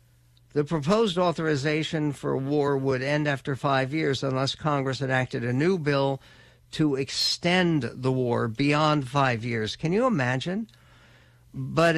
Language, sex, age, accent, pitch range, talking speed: English, male, 60-79, American, 120-155 Hz, 135 wpm